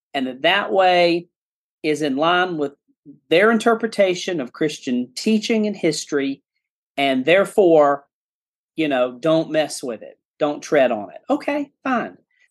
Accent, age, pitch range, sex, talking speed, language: American, 40-59, 150-190 Hz, male, 140 wpm, English